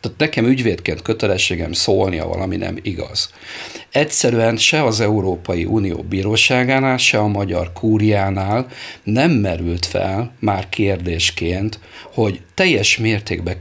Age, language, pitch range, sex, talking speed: 50-69, Hungarian, 95-125 Hz, male, 115 wpm